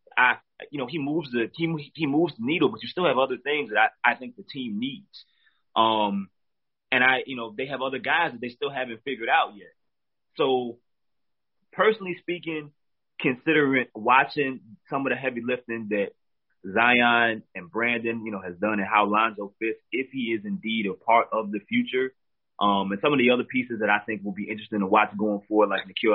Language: English